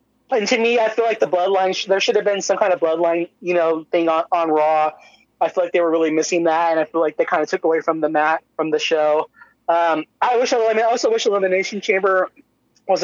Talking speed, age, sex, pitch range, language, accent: 260 wpm, 20-39, male, 165-200 Hz, English, American